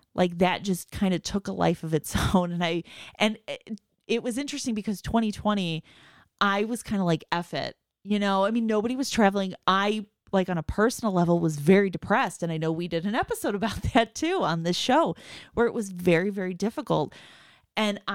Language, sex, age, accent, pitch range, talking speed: English, female, 30-49, American, 170-215 Hz, 205 wpm